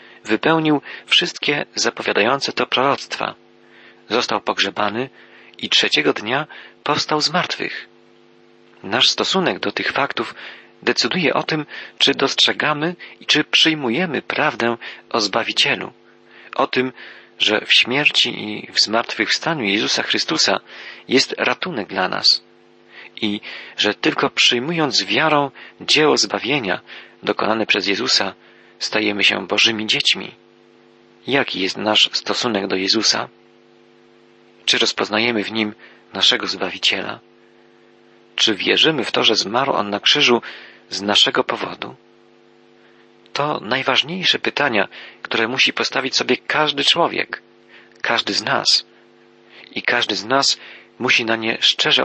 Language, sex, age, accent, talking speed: Polish, male, 40-59, native, 115 wpm